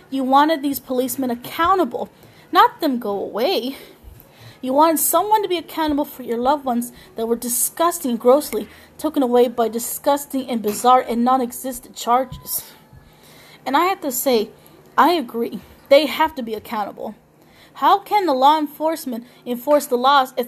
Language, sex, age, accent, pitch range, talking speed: English, female, 20-39, American, 230-290 Hz, 160 wpm